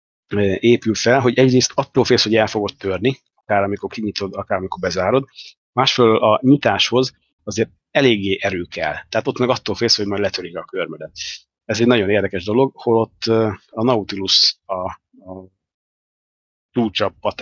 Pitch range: 100-115 Hz